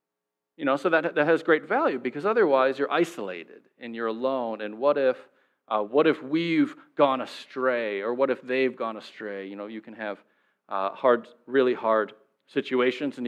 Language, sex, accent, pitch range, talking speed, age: English, male, American, 110-170 Hz, 185 wpm, 40-59